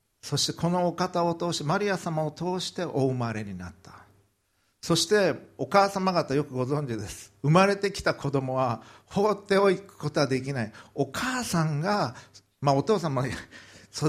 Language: Japanese